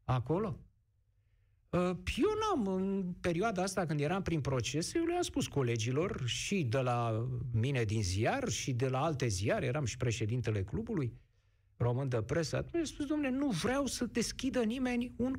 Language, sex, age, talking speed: Romanian, male, 50-69, 155 wpm